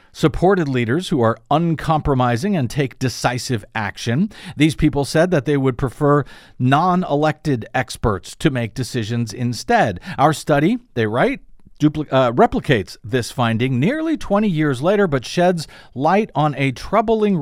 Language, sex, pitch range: English, male, 120-175 Hz